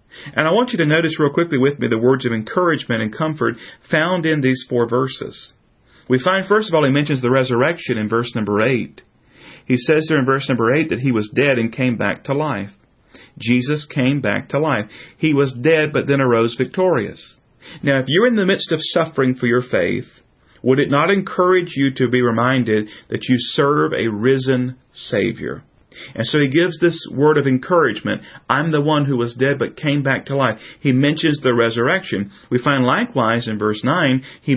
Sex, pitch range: male, 120-155 Hz